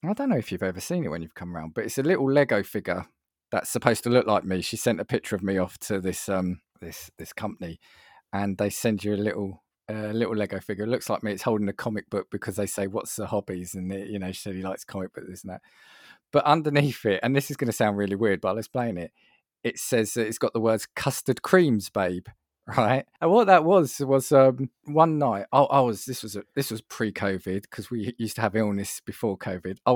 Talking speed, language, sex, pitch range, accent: 250 wpm, English, male, 100-130 Hz, British